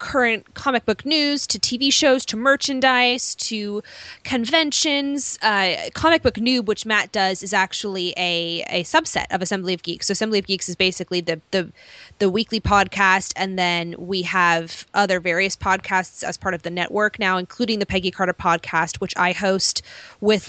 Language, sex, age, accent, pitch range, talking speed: English, female, 20-39, American, 180-230 Hz, 175 wpm